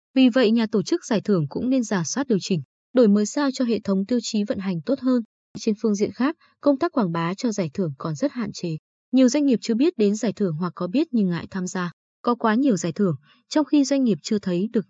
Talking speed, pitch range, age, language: 270 wpm, 185-255 Hz, 20-39, Vietnamese